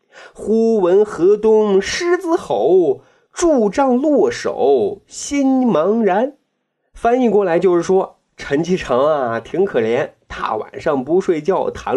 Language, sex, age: Chinese, male, 30-49